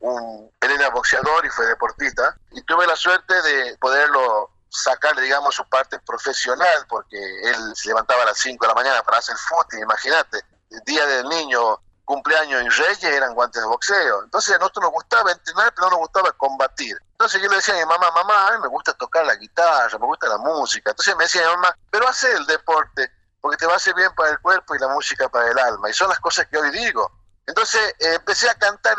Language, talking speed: Spanish, 225 wpm